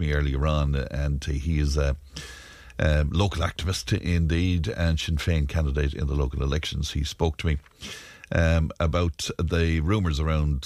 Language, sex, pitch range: English, male, 75-95 Hz